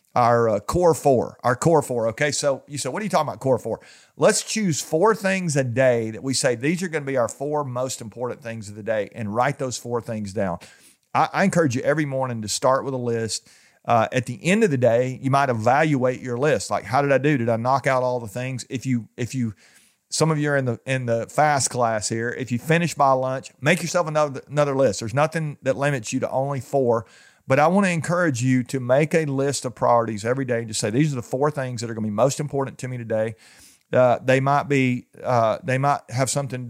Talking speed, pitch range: 255 wpm, 120-150 Hz